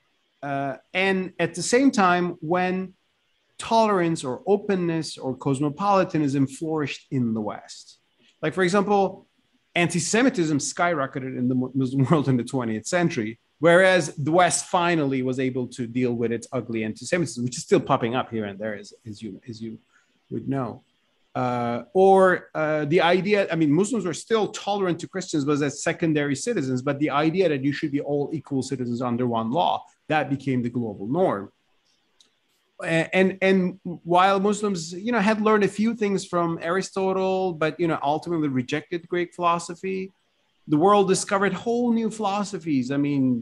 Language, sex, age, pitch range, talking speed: English, male, 30-49, 135-185 Hz, 165 wpm